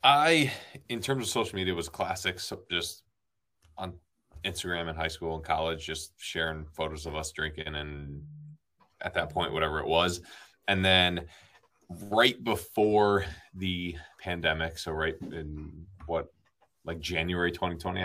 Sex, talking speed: male, 145 wpm